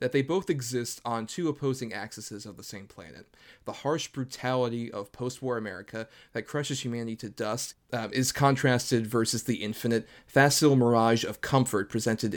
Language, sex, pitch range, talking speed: English, male, 115-135 Hz, 165 wpm